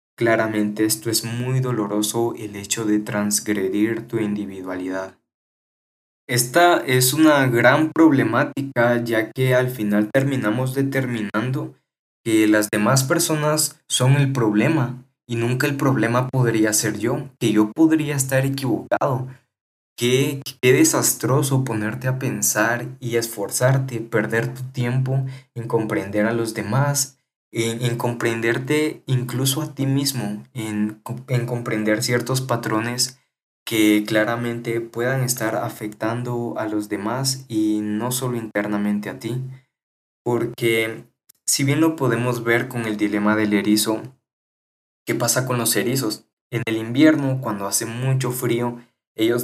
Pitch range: 110-130 Hz